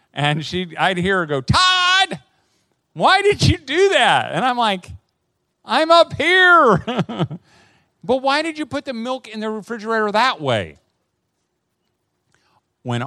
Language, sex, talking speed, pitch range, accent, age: English, male, 140 wpm, 115-180 Hz, American, 40-59